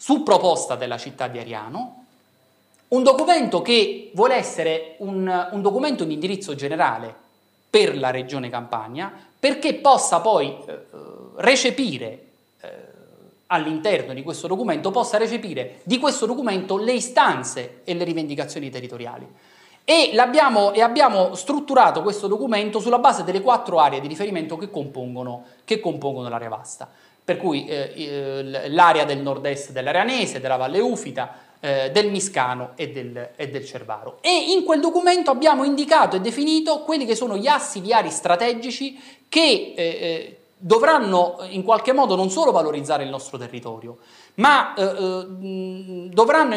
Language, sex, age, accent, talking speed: Italian, male, 30-49, native, 140 wpm